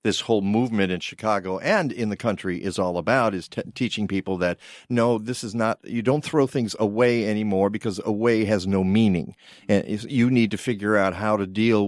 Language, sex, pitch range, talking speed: English, male, 110-155 Hz, 200 wpm